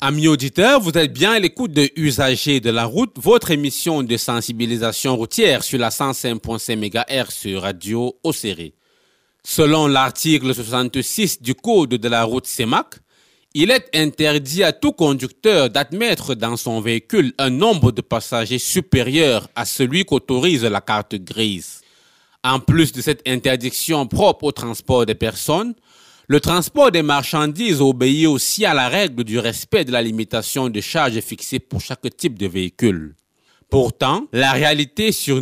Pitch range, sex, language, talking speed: 115-155 Hz, male, French, 150 wpm